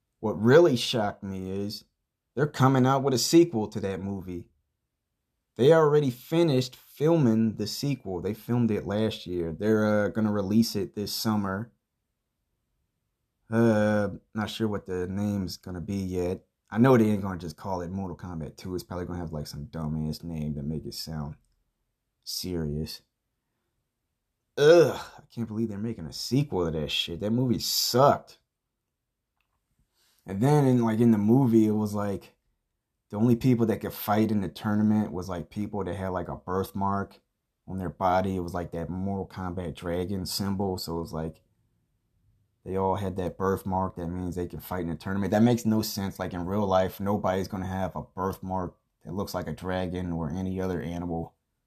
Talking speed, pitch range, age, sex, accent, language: 180 wpm, 85-110 Hz, 30-49, male, American, English